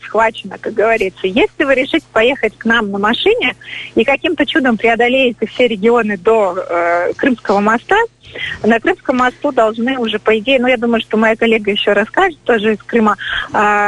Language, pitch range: Russian, 210-270 Hz